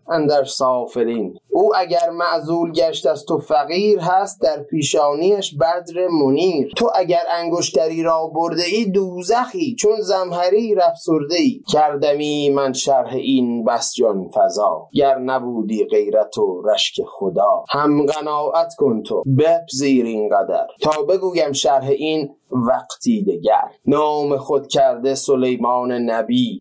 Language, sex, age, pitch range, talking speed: Persian, male, 30-49, 135-190 Hz, 125 wpm